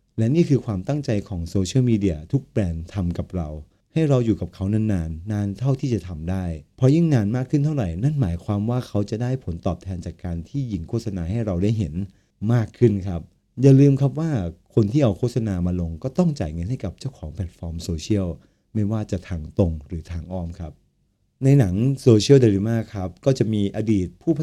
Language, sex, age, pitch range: Thai, male, 20-39, 95-120 Hz